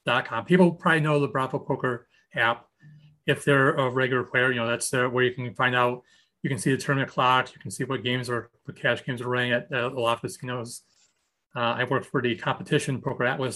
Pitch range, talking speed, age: 120-150 Hz, 240 wpm, 30-49